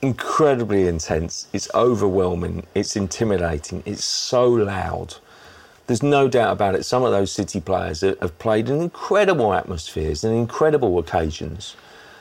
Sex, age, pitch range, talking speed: male, 40-59, 85-115 Hz, 135 wpm